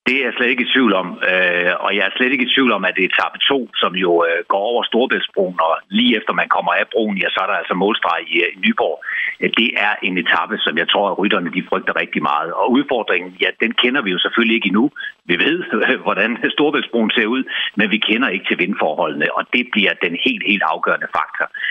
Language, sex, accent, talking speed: Danish, male, native, 230 wpm